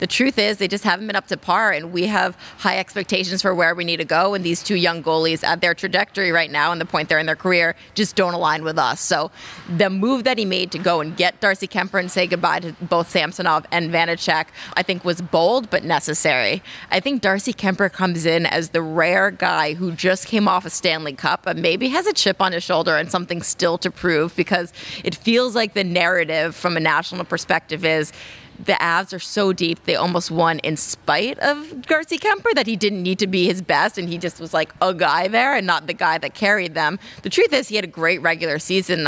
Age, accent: 30-49, American